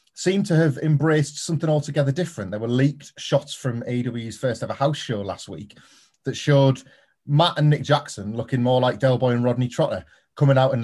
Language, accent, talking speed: English, British, 200 wpm